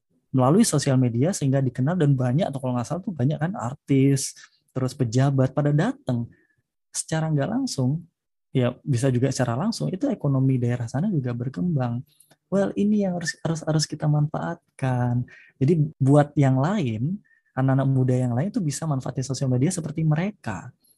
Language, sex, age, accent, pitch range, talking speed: Indonesian, male, 20-39, native, 125-150 Hz, 160 wpm